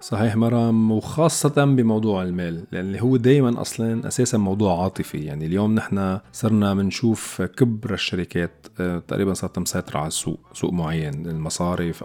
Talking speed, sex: 135 wpm, male